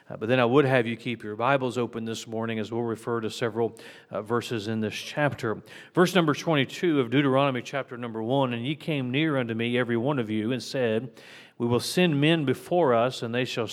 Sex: male